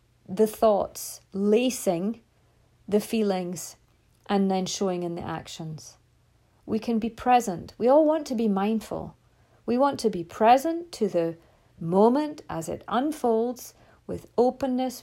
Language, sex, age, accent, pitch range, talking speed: English, female, 40-59, British, 180-235 Hz, 135 wpm